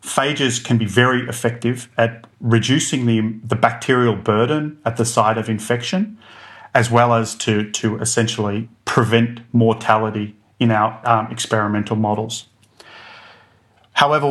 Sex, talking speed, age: male, 125 wpm, 30-49